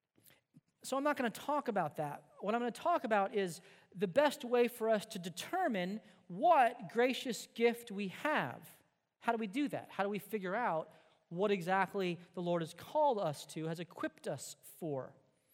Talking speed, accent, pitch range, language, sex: 190 wpm, American, 185-245 Hz, English, male